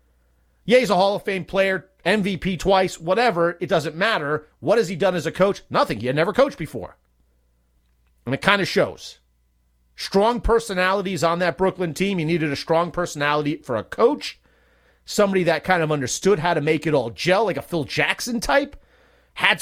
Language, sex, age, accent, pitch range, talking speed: English, male, 40-59, American, 130-205 Hz, 190 wpm